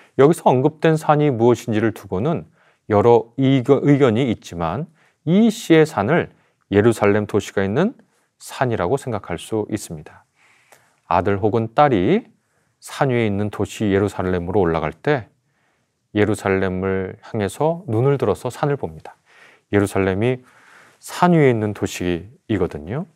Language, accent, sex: Korean, native, male